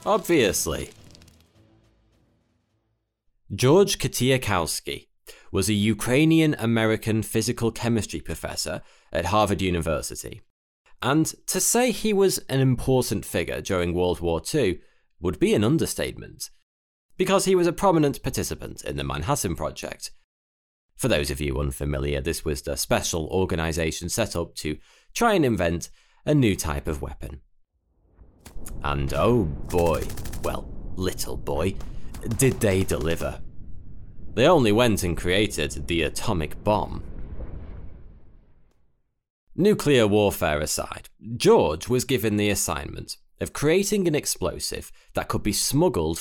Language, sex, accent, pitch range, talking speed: English, male, British, 80-120 Hz, 120 wpm